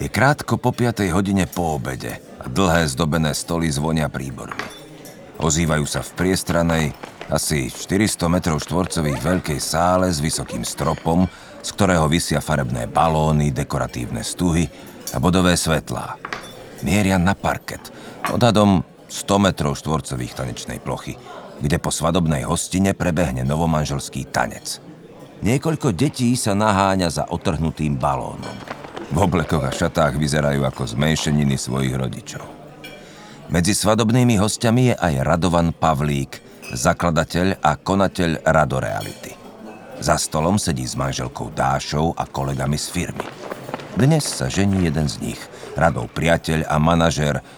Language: Slovak